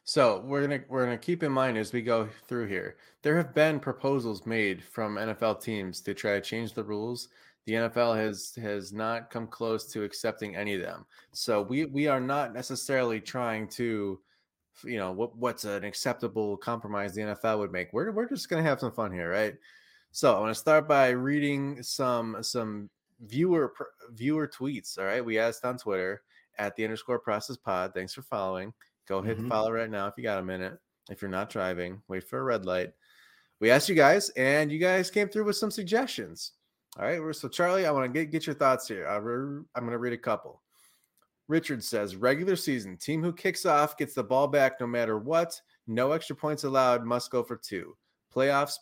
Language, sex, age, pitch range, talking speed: English, male, 20-39, 110-145 Hz, 205 wpm